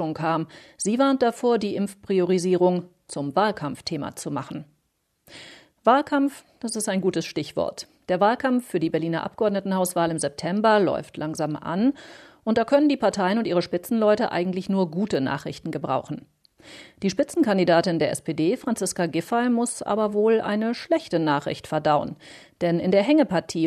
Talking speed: 145 wpm